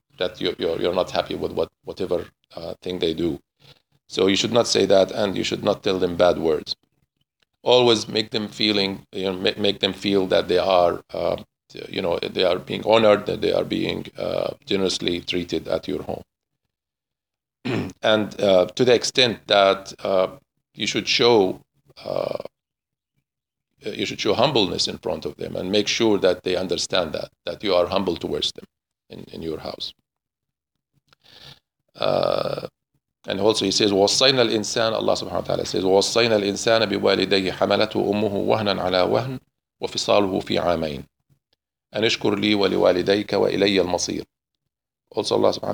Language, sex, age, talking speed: English, male, 50-69, 140 wpm